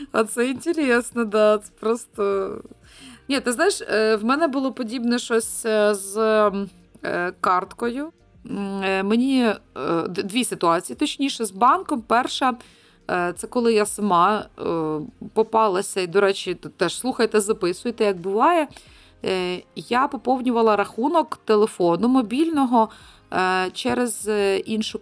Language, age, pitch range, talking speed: Ukrainian, 20-39, 185-250 Hz, 105 wpm